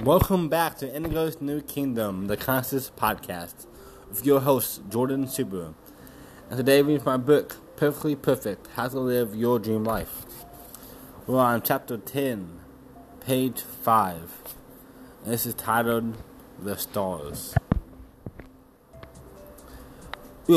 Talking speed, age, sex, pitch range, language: 115 wpm, 20-39, male, 105-140 Hz, English